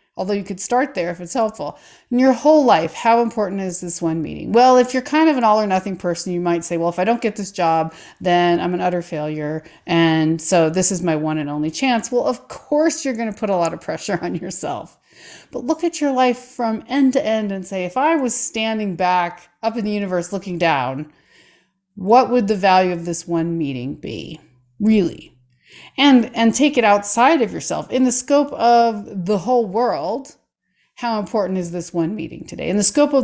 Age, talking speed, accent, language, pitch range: 30-49, 220 wpm, American, English, 170-240 Hz